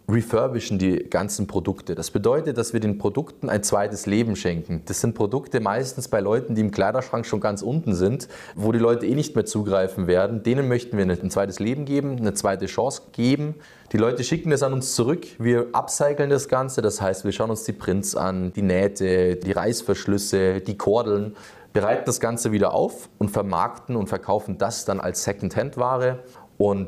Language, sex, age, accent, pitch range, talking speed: German, male, 20-39, German, 100-125 Hz, 195 wpm